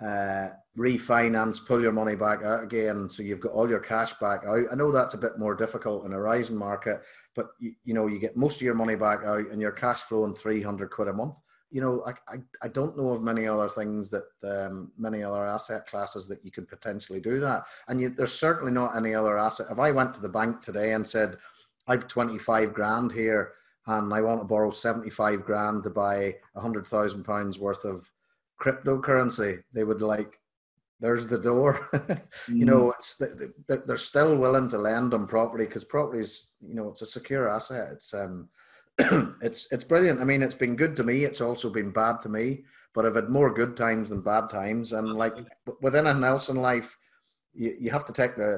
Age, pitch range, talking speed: 30-49, 105-125 Hz, 210 wpm